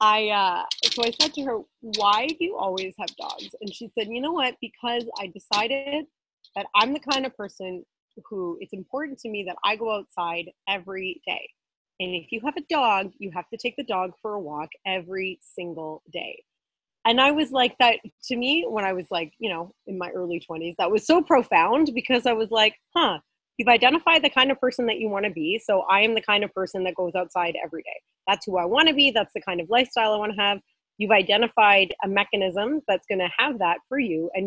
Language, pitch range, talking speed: English, 185-245 Hz, 230 wpm